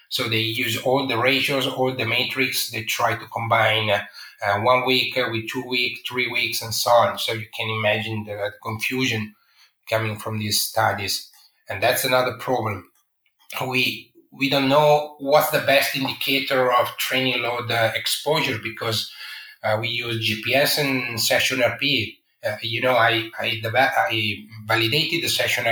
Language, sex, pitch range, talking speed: English, male, 110-130 Hz, 165 wpm